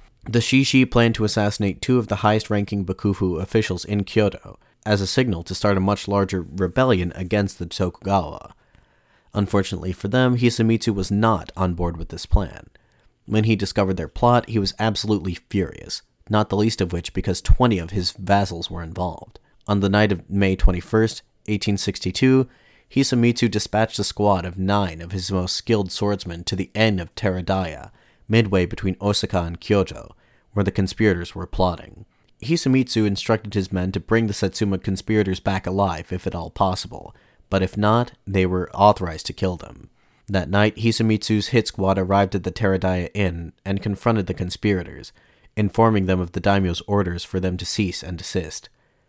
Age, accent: 30-49, American